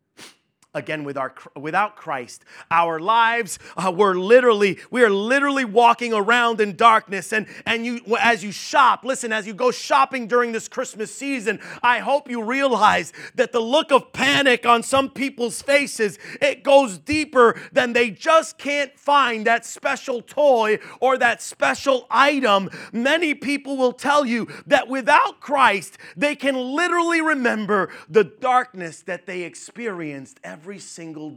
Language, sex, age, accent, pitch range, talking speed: English, male, 30-49, American, 165-255 Hz, 155 wpm